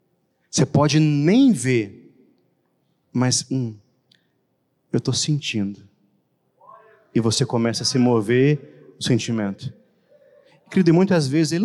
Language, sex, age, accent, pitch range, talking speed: Portuguese, male, 30-49, Brazilian, 125-165 Hz, 110 wpm